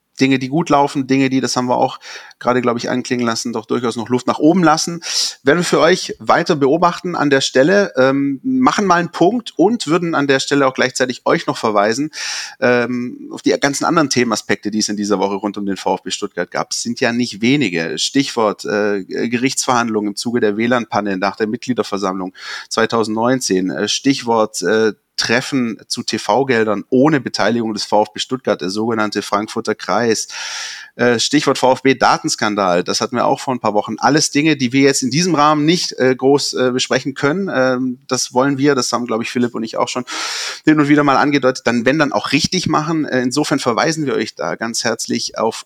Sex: male